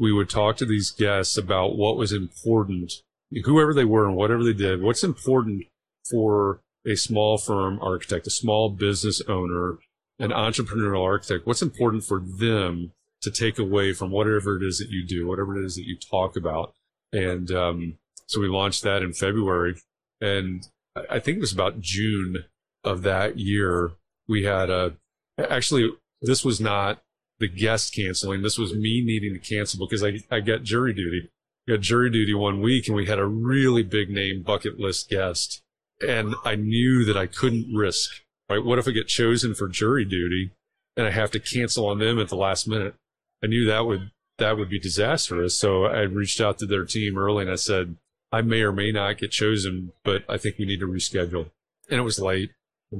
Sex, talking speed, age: male, 195 wpm, 30-49